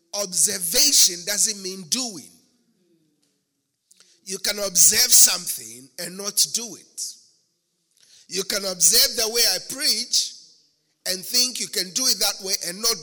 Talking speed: 135 wpm